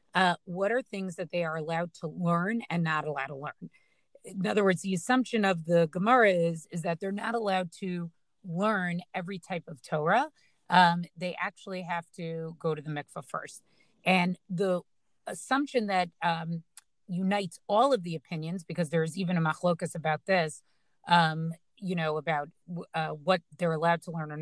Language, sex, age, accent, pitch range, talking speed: English, female, 30-49, American, 165-200 Hz, 180 wpm